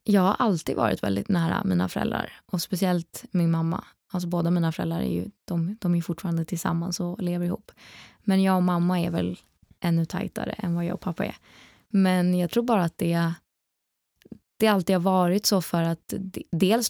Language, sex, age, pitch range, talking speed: Swedish, female, 20-39, 170-190 Hz, 190 wpm